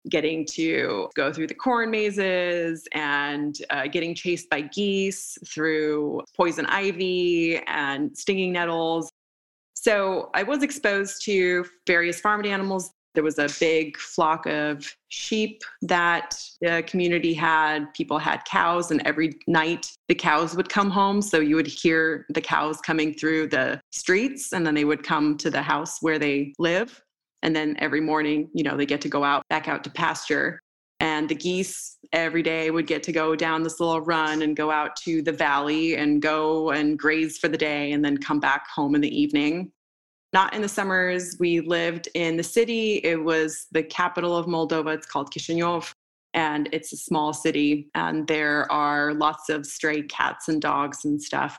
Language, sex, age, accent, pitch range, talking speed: English, female, 20-39, American, 150-180 Hz, 180 wpm